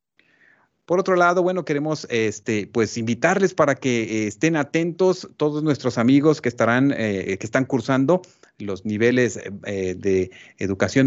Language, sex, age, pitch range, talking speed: Spanish, male, 40-59, 120-160 Hz, 140 wpm